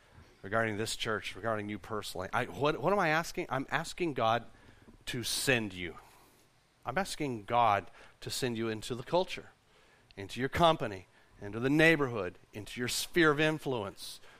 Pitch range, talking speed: 115-145 Hz, 160 wpm